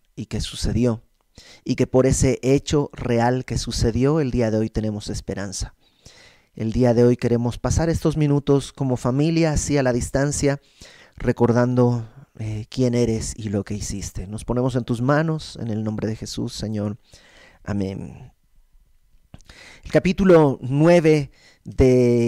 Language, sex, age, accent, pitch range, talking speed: Spanish, male, 30-49, Mexican, 120-155 Hz, 150 wpm